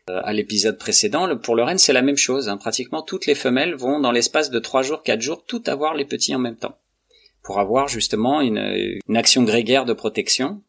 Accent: French